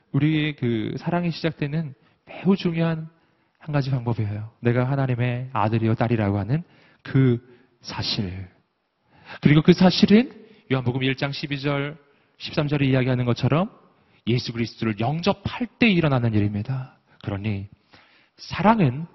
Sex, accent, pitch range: male, native, 125-185 Hz